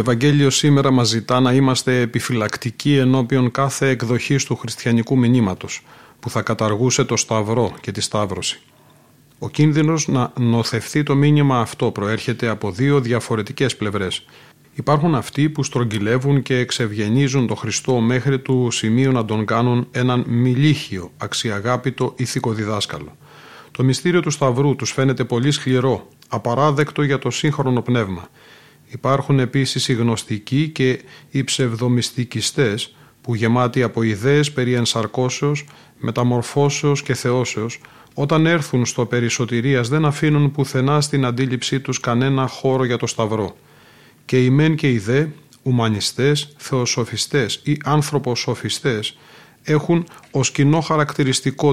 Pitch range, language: 120-140 Hz, Greek